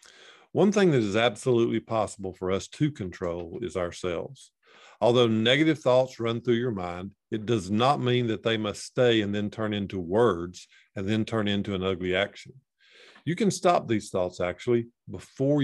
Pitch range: 100-130 Hz